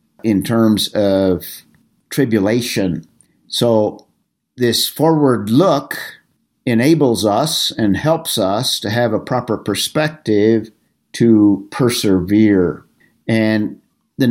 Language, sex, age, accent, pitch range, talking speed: English, male, 50-69, American, 105-135 Hz, 90 wpm